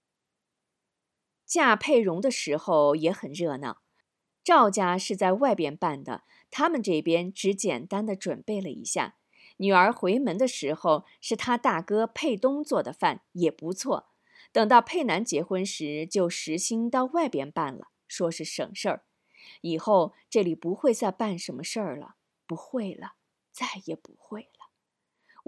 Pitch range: 180-250 Hz